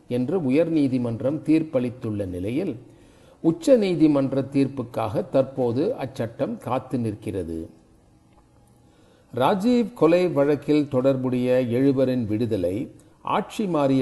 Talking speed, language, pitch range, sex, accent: 75 wpm, Tamil, 120-155 Hz, male, native